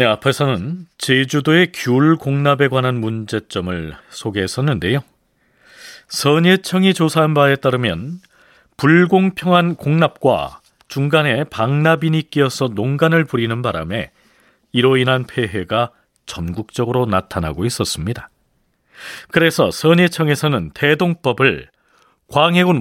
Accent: native